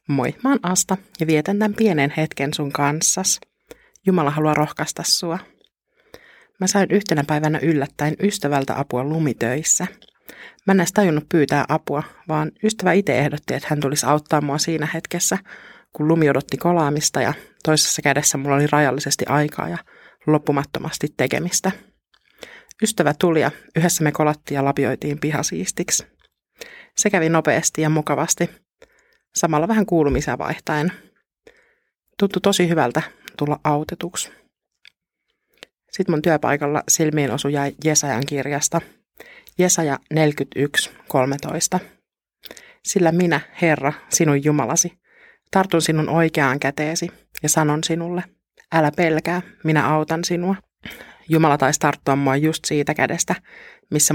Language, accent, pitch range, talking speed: Finnish, native, 145-180 Hz, 120 wpm